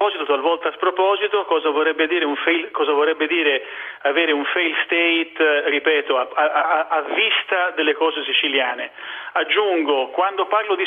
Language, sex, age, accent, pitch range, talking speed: Italian, male, 40-59, native, 145-185 Hz, 135 wpm